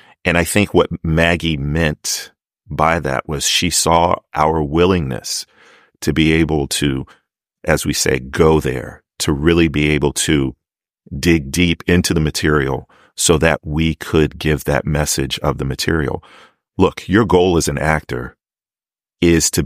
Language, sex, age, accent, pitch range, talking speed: English, male, 40-59, American, 75-85 Hz, 155 wpm